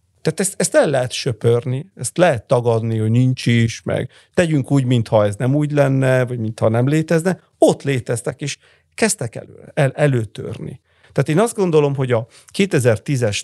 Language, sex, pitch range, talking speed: Hungarian, male, 115-140 Hz, 160 wpm